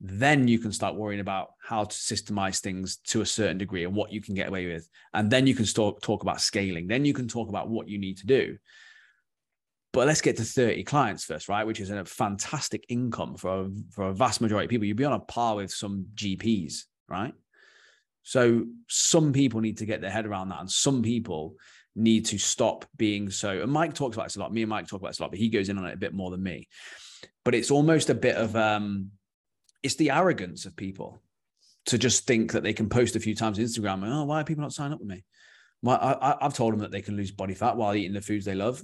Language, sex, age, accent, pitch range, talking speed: English, male, 20-39, British, 100-130 Hz, 250 wpm